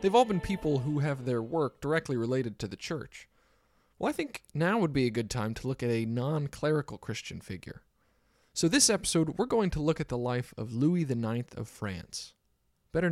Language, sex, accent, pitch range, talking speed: English, male, American, 110-160 Hz, 205 wpm